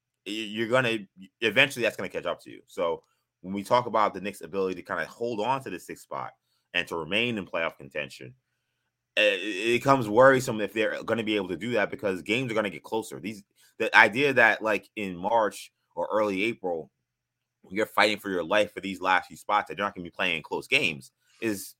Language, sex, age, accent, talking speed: English, male, 20-39, American, 230 wpm